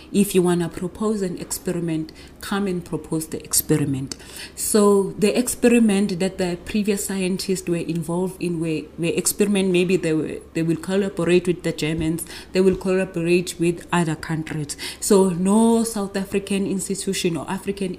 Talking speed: 150 wpm